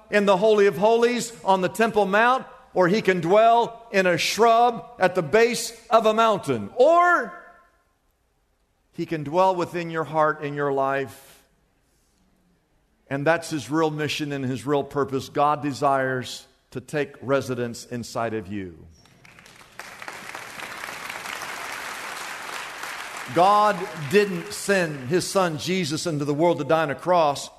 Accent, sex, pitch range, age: American, male, 140-200 Hz, 50-69